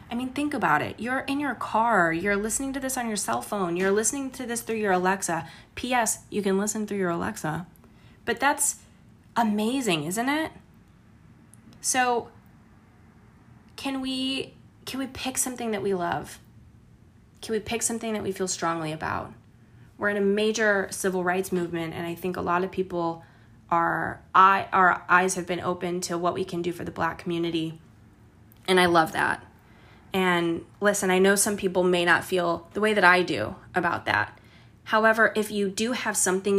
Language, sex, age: English, female, 20-39